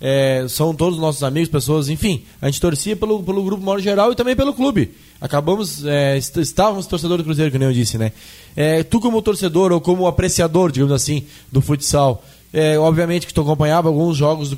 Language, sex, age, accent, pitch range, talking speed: Portuguese, male, 20-39, Brazilian, 140-180 Hz, 180 wpm